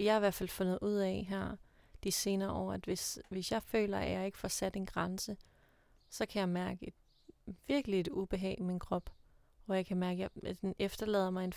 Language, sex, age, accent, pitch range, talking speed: Danish, female, 30-49, native, 185-210 Hz, 230 wpm